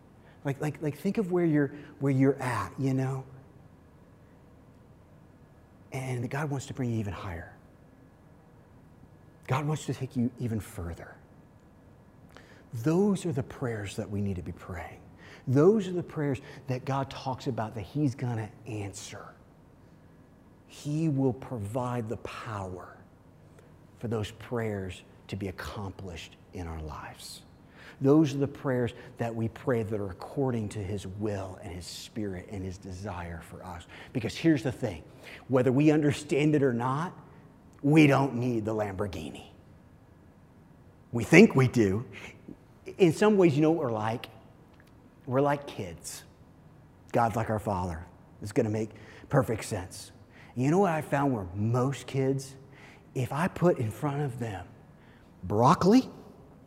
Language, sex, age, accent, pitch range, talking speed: English, male, 40-59, American, 100-140 Hz, 150 wpm